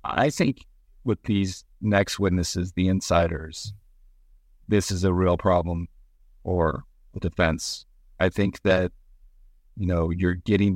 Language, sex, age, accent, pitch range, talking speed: English, male, 40-59, American, 85-100 Hz, 130 wpm